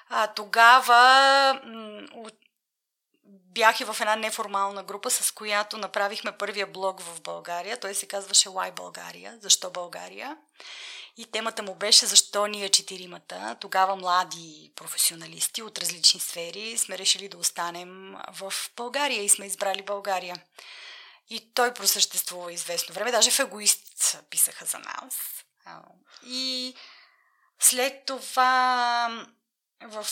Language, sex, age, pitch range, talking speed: Bulgarian, female, 30-49, 200-250 Hz, 120 wpm